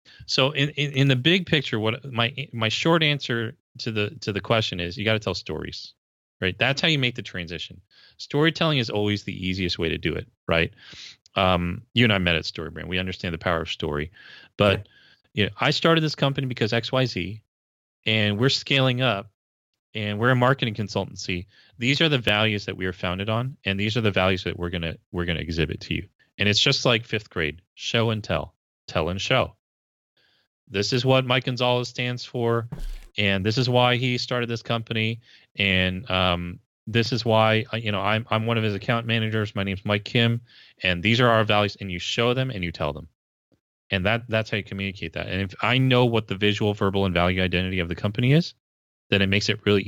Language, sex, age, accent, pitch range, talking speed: English, male, 30-49, American, 90-120 Hz, 215 wpm